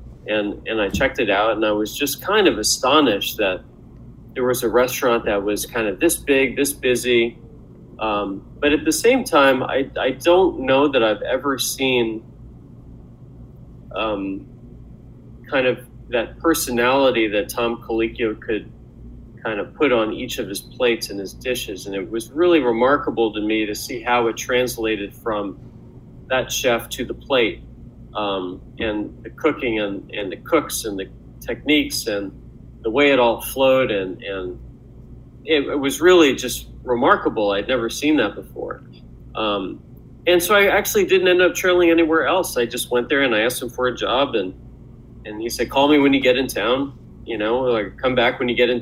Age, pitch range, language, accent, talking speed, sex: 40-59, 110-140 Hz, English, American, 185 wpm, male